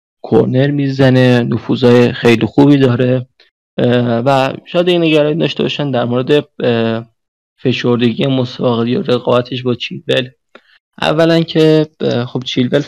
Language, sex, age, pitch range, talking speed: Persian, male, 30-49, 115-140 Hz, 105 wpm